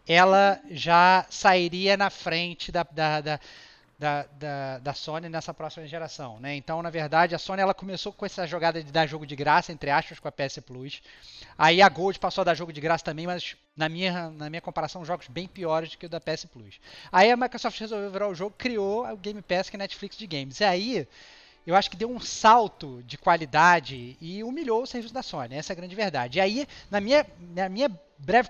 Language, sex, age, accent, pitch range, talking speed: Portuguese, male, 20-39, Brazilian, 160-205 Hz, 225 wpm